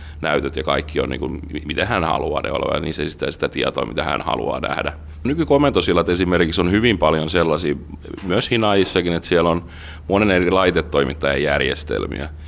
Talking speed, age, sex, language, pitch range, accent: 150 wpm, 30-49, male, Finnish, 75-90 Hz, native